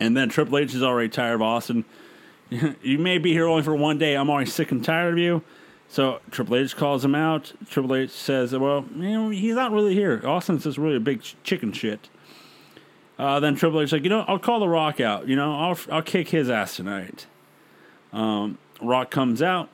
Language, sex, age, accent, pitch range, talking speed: English, male, 30-49, American, 135-165 Hz, 220 wpm